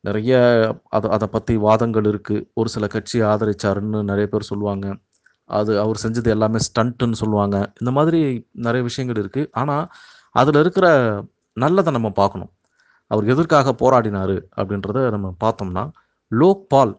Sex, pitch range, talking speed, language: male, 100-135 Hz, 130 wpm, Tamil